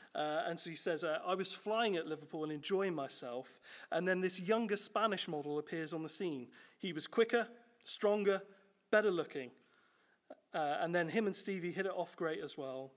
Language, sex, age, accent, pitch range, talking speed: English, male, 30-49, British, 160-215 Hz, 195 wpm